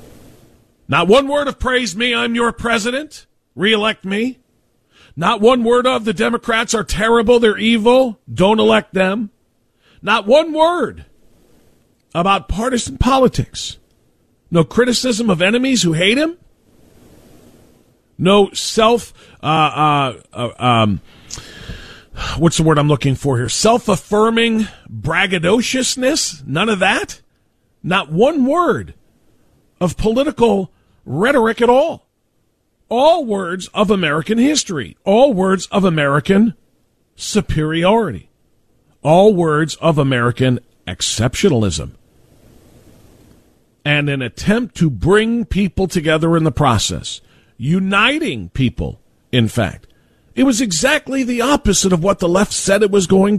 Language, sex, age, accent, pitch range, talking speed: English, male, 40-59, American, 155-240 Hz, 120 wpm